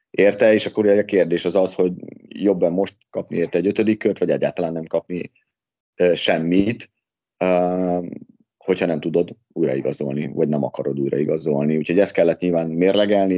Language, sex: Hungarian, male